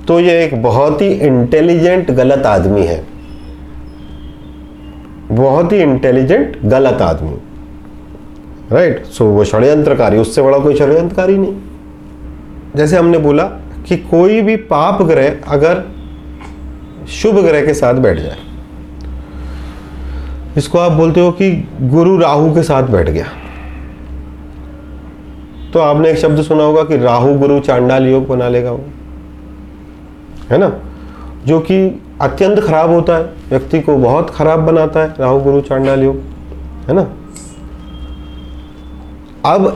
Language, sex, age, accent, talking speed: Hindi, male, 40-59, native, 125 wpm